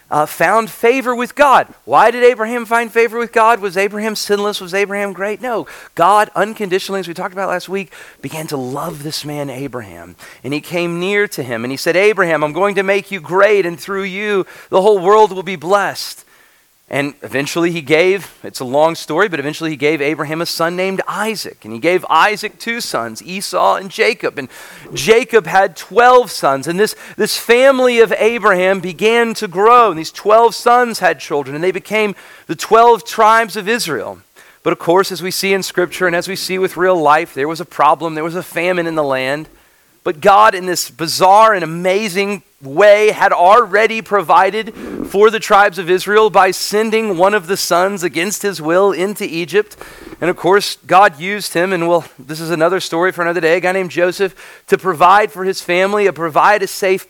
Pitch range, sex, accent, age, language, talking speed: 170-210 Hz, male, American, 40-59, English, 205 wpm